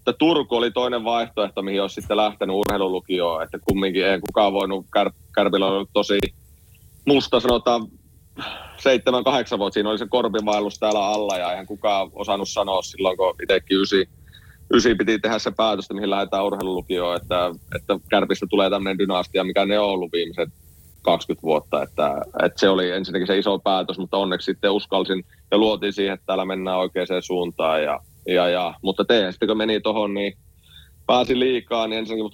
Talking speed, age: 170 wpm, 30-49